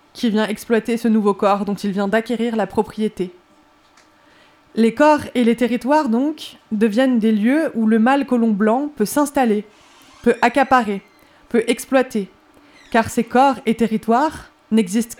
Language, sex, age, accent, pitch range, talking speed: French, female, 20-39, French, 215-255 Hz, 150 wpm